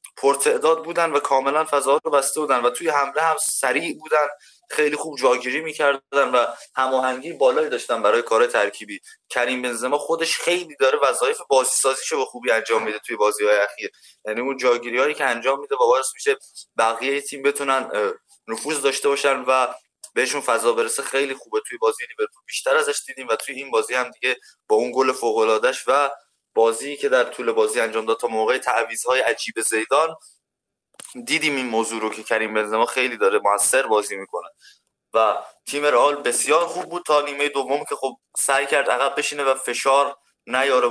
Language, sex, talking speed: Persian, male, 175 wpm